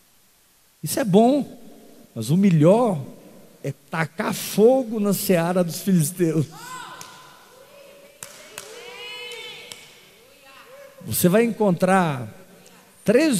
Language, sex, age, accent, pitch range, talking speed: Portuguese, male, 50-69, Brazilian, 130-190 Hz, 75 wpm